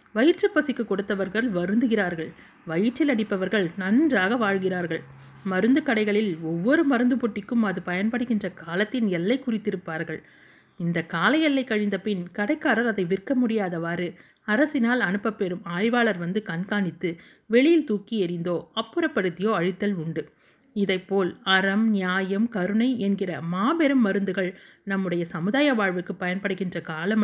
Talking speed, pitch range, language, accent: 105 wpm, 180-235 Hz, Tamil, native